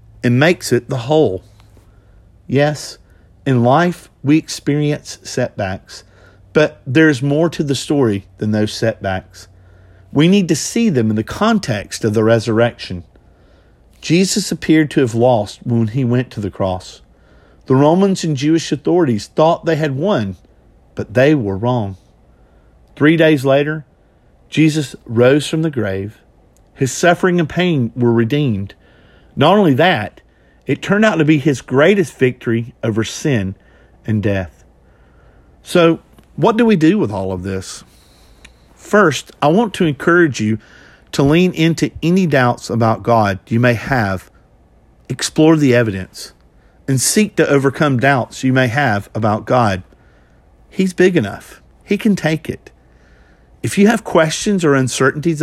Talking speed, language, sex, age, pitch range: 145 wpm, English, male, 50-69, 100-155 Hz